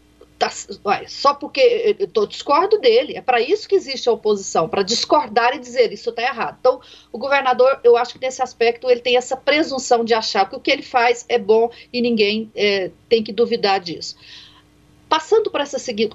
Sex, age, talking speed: female, 40-59, 190 wpm